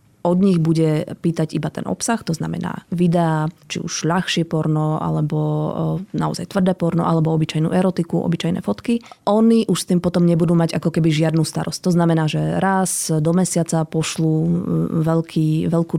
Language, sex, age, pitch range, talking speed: Slovak, female, 20-39, 160-180 Hz, 160 wpm